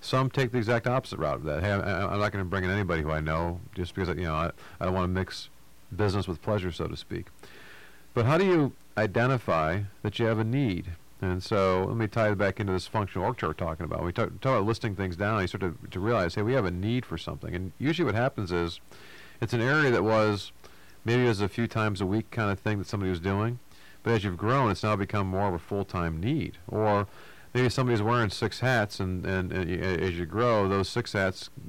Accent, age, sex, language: American, 50-69, male, English